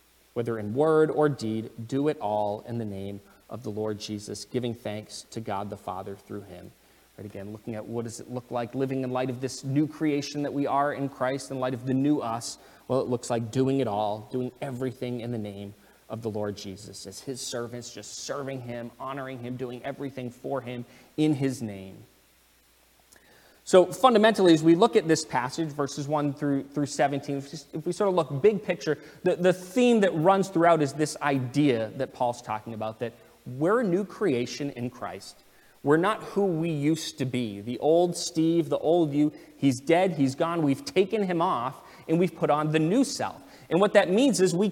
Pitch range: 120-165 Hz